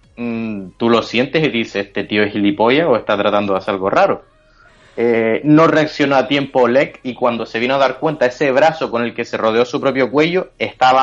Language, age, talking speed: Spanish, 30-49, 220 wpm